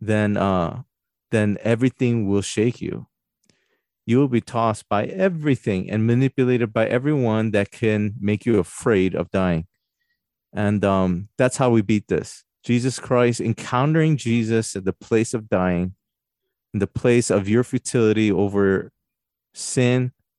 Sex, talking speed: male, 140 wpm